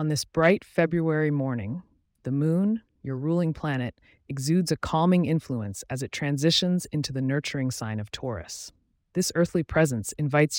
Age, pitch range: 30-49, 120-165 Hz